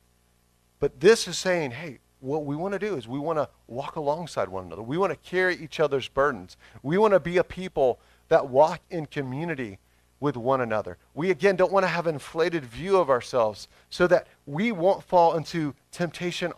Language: English